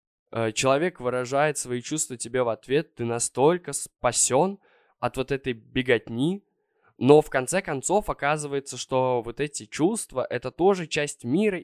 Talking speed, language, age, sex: 140 wpm, Russian, 20-39, male